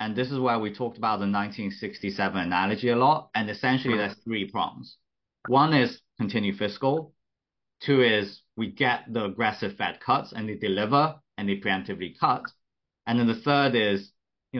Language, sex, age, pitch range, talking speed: English, male, 20-39, 95-110 Hz, 175 wpm